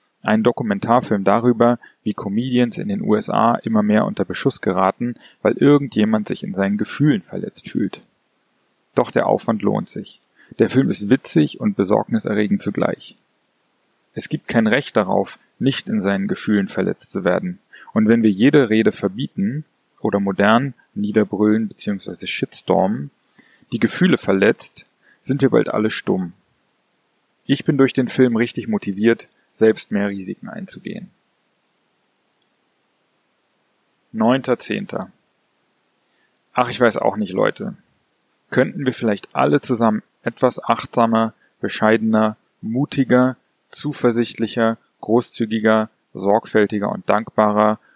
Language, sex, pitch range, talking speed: German, male, 105-130 Hz, 120 wpm